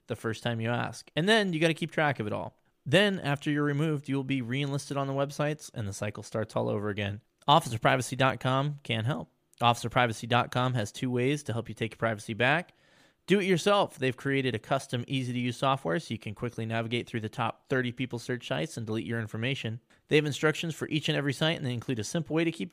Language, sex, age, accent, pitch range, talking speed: English, male, 20-39, American, 115-150 Hz, 240 wpm